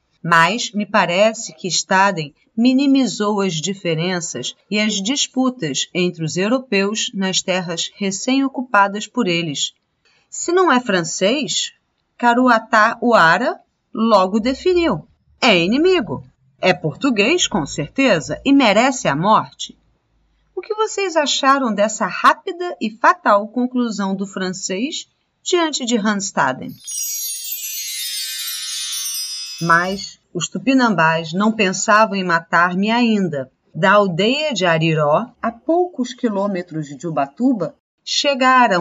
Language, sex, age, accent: Portuguese, female, 40-59, Brazilian